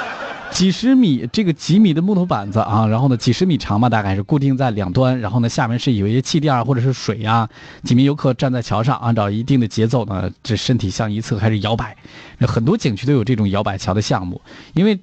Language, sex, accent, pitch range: Chinese, male, native, 110-160 Hz